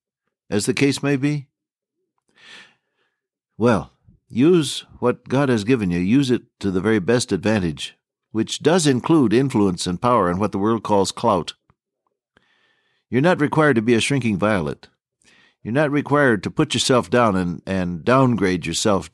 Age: 60-79